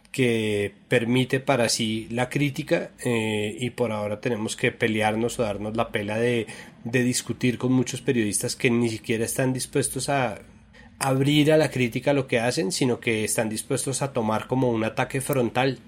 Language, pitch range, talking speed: Spanish, 115-130 Hz, 175 wpm